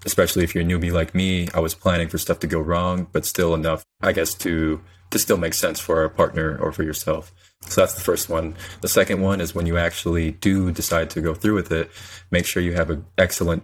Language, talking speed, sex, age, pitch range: English, 245 wpm, male, 20-39, 80-90 Hz